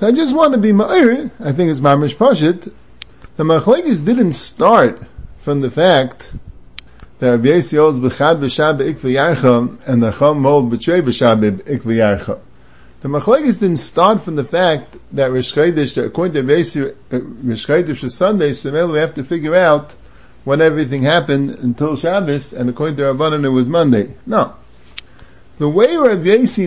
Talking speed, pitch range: 155 wpm, 130-180 Hz